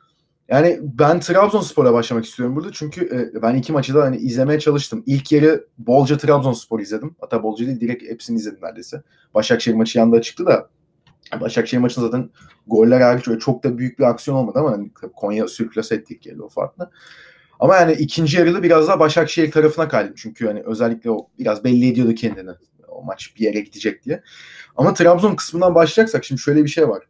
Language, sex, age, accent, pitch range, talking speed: Turkish, male, 30-49, native, 120-160 Hz, 180 wpm